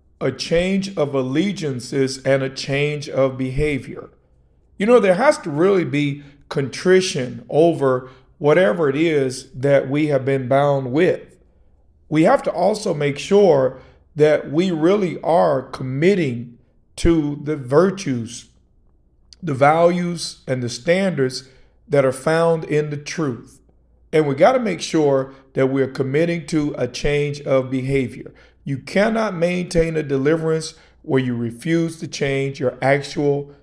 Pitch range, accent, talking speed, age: 130-165 Hz, American, 135 wpm, 50-69